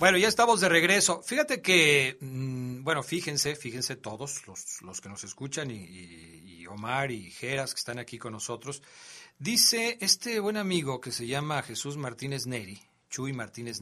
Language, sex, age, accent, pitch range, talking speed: Spanish, male, 40-59, Mexican, 130-195 Hz, 175 wpm